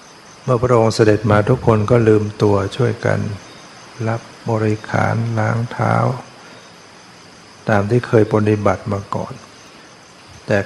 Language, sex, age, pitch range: Thai, male, 60-79, 105-120 Hz